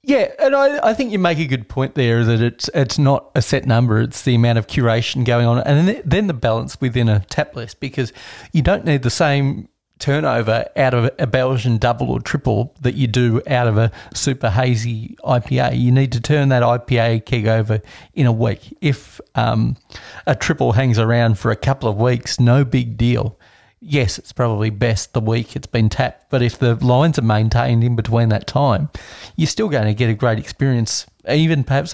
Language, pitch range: English, 115-140 Hz